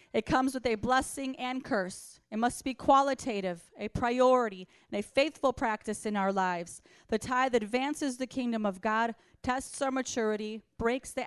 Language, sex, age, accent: English, female, 30-49, American